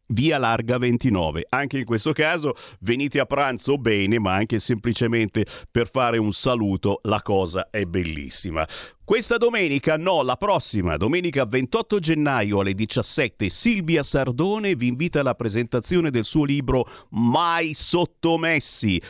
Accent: native